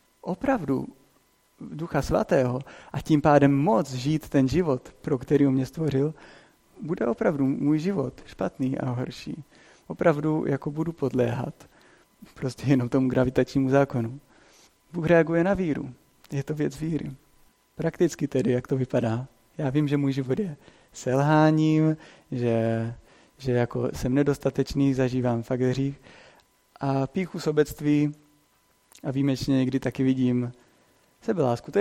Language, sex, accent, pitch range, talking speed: Czech, male, native, 130-160 Hz, 130 wpm